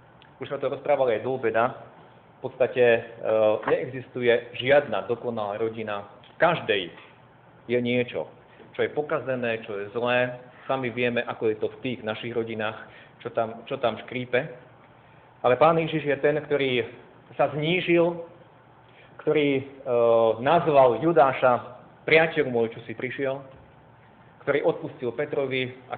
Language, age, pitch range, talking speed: Slovak, 40-59, 115-135 Hz, 130 wpm